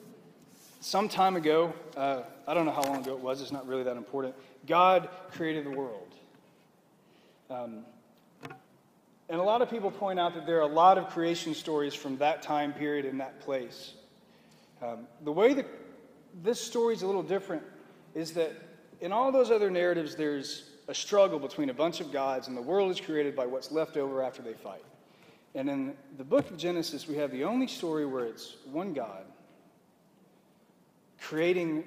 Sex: male